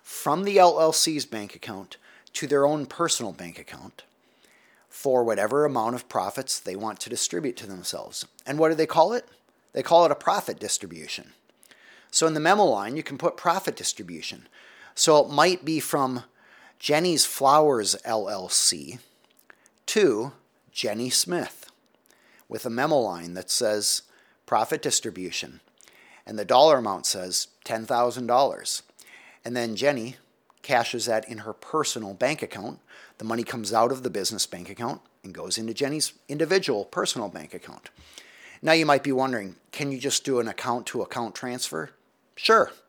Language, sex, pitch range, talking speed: English, male, 110-150 Hz, 155 wpm